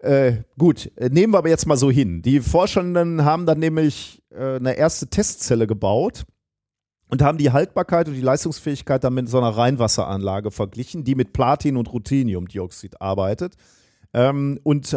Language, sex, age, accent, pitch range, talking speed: German, male, 40-59, German, 115-145 Hz, 160 wpm